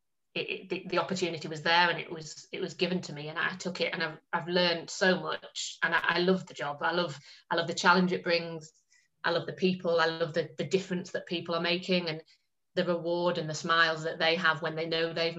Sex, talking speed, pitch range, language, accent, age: female, 250 wpm, 160-175 Hz, English, British, 20-39